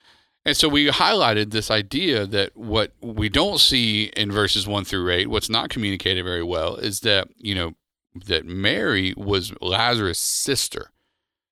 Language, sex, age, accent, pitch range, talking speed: English, male, 40-59, American, 95-115 Hz, 155 wpm